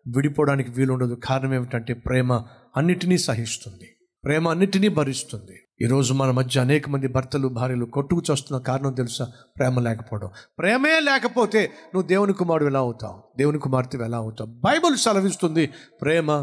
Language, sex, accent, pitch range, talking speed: Telugu, male, native, 120-165 Hz, 135 wpm